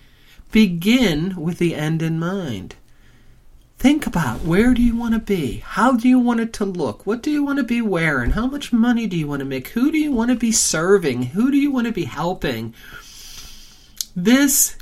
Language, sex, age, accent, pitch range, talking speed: English, male, 40-59, American, 145-210 Hz, 205 wpm